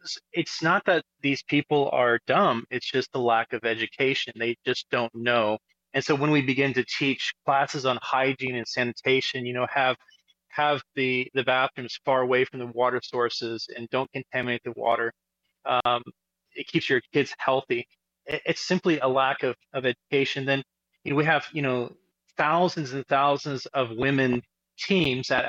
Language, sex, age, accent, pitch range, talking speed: English, male, 30-49, American, 125-155 Hz, 175 wpm